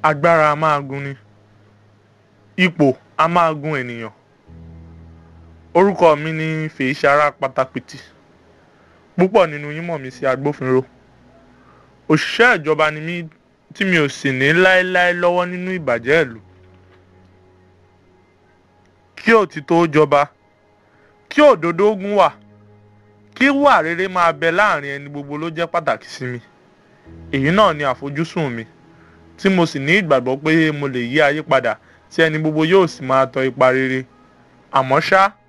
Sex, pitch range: male, 115-170 Hz